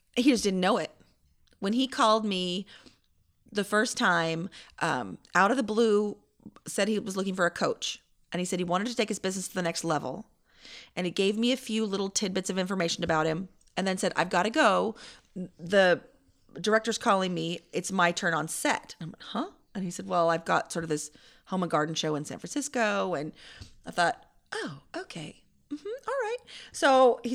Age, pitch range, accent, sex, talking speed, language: 30-49, 170-225 Hz, American, female, 205 wpm, English